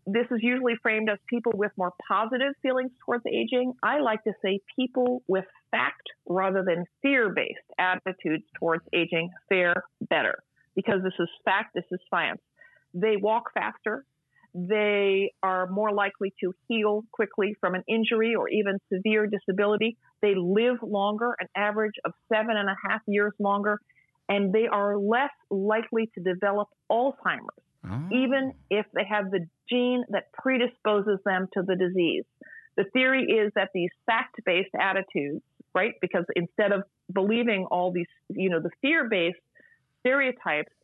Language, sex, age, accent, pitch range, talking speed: English, female, 40-59, American, 185-230 Hz, 150 wpm